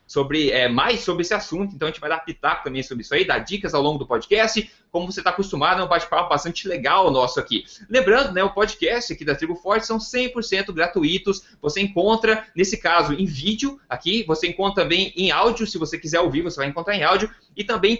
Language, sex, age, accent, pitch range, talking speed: Portuguese, male, 20-39, Brazilian, 165-210 Hz, 225 wpm